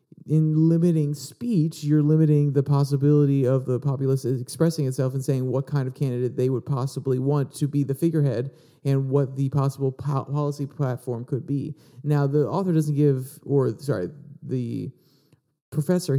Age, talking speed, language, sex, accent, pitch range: 40-59, 160 wpm, English, male, American, 130-155 Hz